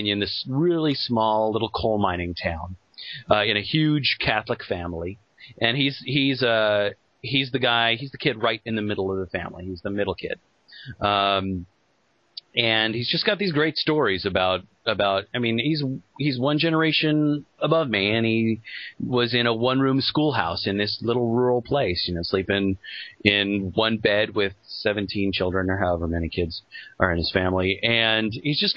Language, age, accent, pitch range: English, 30-49, American, 100-125 Hz